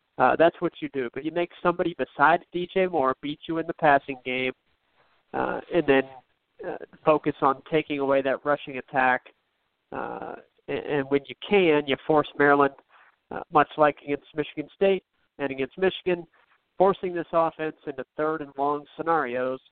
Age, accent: 40-59, American